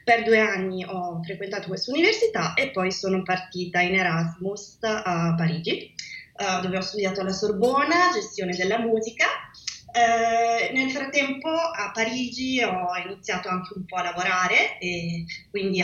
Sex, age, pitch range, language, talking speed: female, 20-39, 180-230 Hz, Italian, 135 wpm